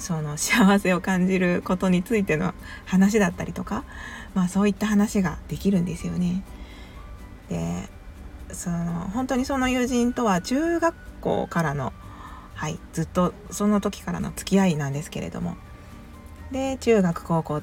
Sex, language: female, Japanese